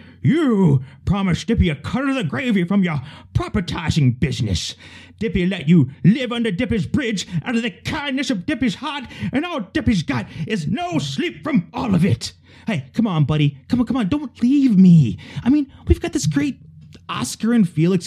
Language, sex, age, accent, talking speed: English, male, 30-49, American, 190 wpm